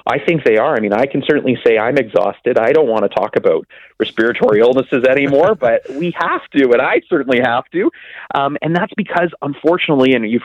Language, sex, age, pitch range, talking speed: English, male, 30-49, 115-165 Hz, 210 wpm